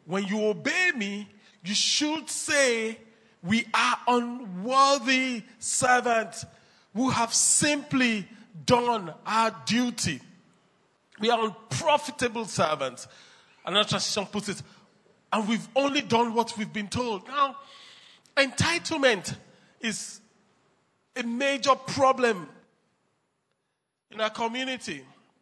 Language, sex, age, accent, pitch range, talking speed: English, male, 40-59, Nigerian, 200-265 Hz, 100 wpm